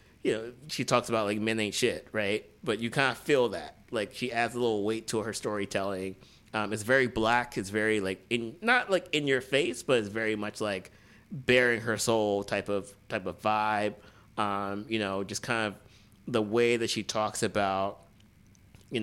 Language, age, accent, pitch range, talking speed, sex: English, 30-49, American, 100-120 Hz, 200 wpm, male